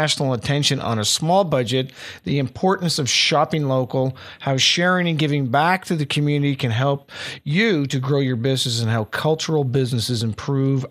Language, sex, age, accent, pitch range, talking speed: English, male, 50-69, American, 130-160 Hz, 170 wpm